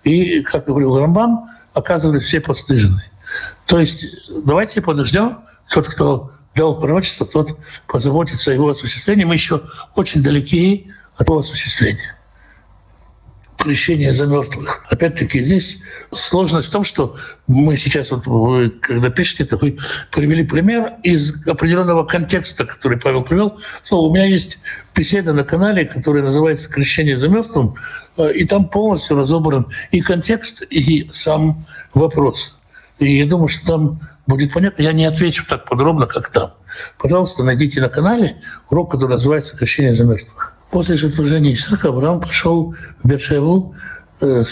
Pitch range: 135-175 Hz